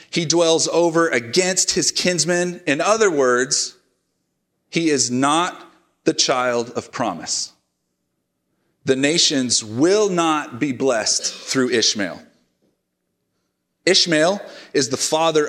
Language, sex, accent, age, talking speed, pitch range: English, male, American, 30-49, 110 wpm, 120-170 Hz